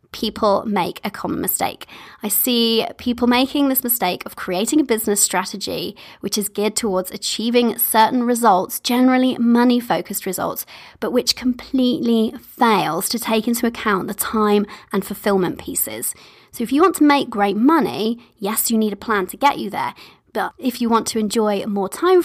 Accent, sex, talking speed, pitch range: British, female, 175 wpm, 210-265 Hz